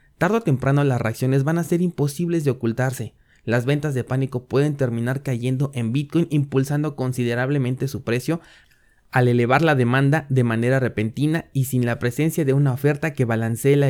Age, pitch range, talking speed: 20-39, 115-140 Hz, 175 wpm